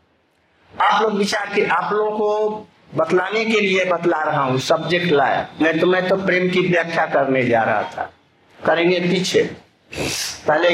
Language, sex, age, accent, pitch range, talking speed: Hindi, male, 50-69, native, 170-225 Hz, 160 wpm